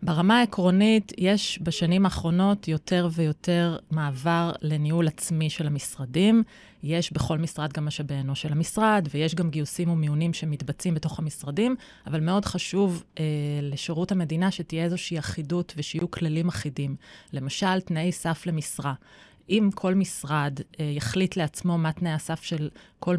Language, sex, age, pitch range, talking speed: Hebrew, female, 30-49, 150-185 Hz, 135 wpm